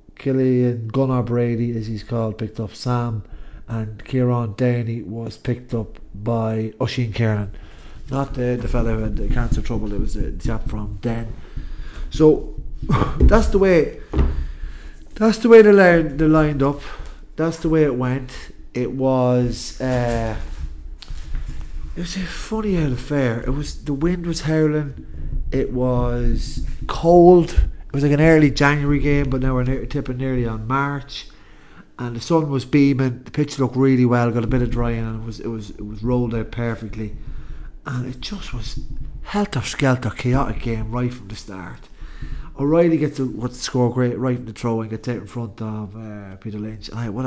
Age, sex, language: 30-49, male, English